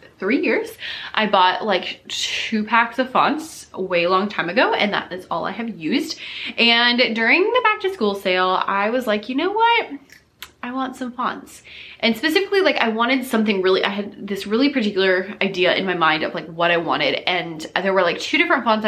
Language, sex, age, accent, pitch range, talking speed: English, female, 20-39, American, 190-260 Hz, 210 wpm